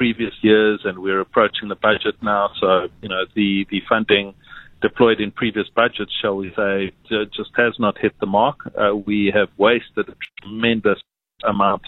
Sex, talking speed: male, 170 wpm